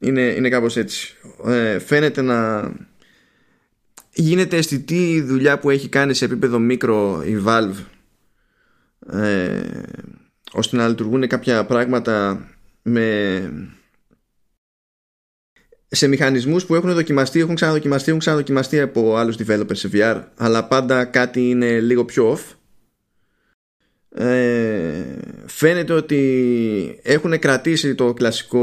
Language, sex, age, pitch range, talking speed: Greek, male, 20-39, 110-140 Hz, 105 wpm